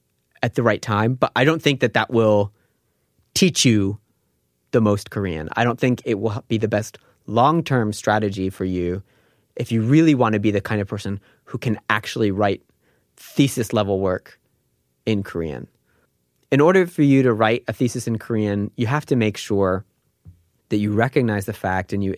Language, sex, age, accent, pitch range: Korean, male, 20-39, American, 95-120 Hz